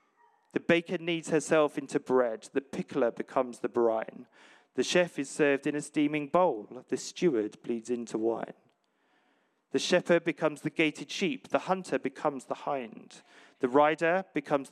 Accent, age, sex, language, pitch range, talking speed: British, 40-59, male, English, 135-175 Hz, 155 wpm